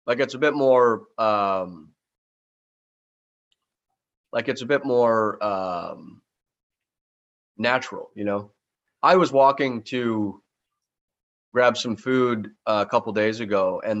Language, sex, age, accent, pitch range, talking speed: English, male, 30-49, American, 100-135 Hz, 115 wpm